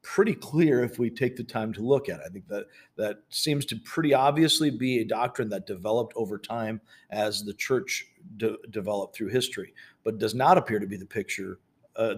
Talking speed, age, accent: 205 wpm, 50-69, American